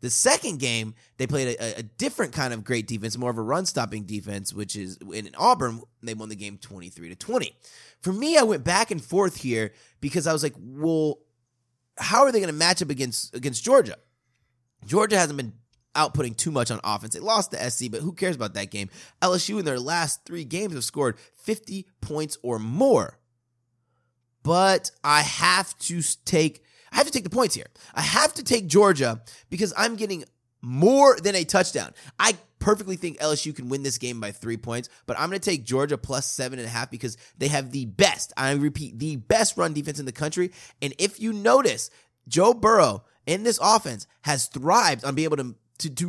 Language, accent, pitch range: English, American, 120-180 Hz